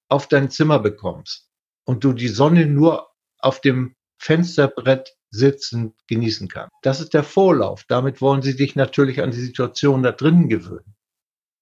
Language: German